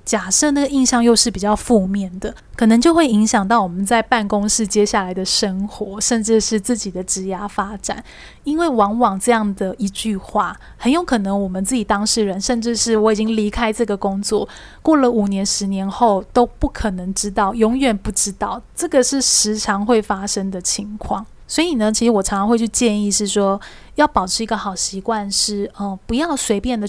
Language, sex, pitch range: Chinese, female, 205-245 Hz